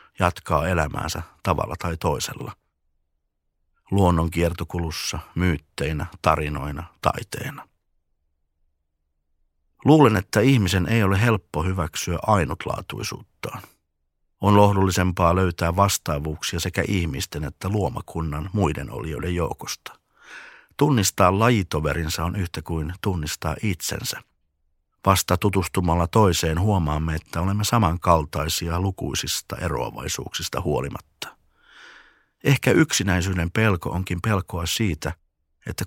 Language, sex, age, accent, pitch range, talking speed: Finnish, male, 50-69, native, 80-100 Hz, 90 wpm